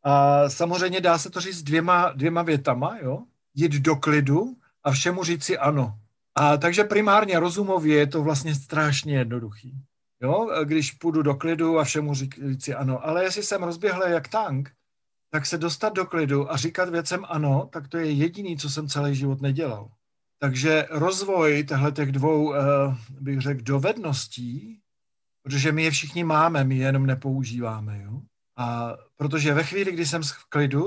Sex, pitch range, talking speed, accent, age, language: male, 135-170 Hz, 165 wpm, native, 50-69, Czech